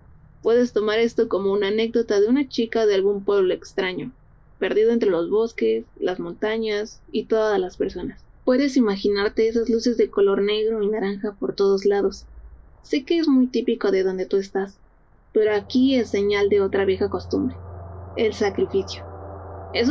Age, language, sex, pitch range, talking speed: 30-49, Spanish, female, 195-230 Hz, 165 wpm